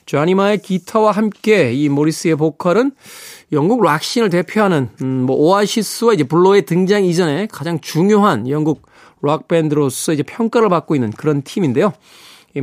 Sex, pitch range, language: male, 140-200 Hz, Korean